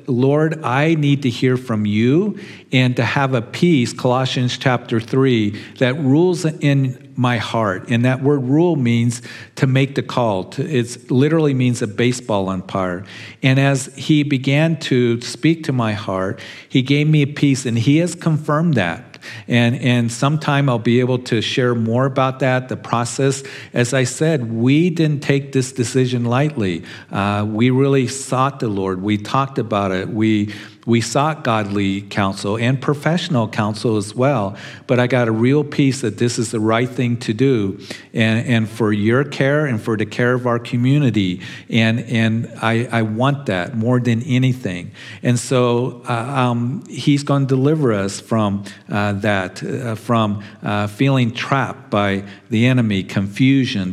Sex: male